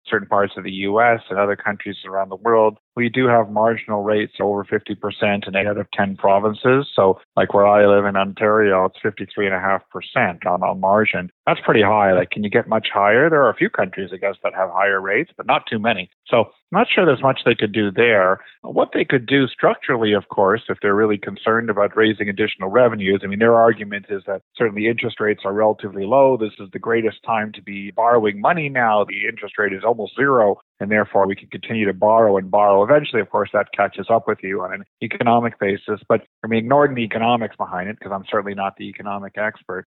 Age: 40-59